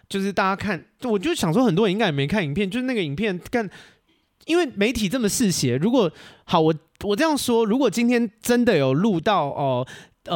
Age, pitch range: 30-49, 135-195 Hz